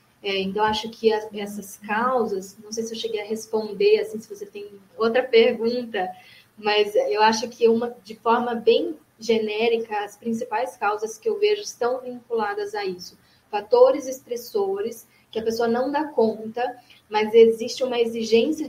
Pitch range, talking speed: 205-245 Hz, 165 wpm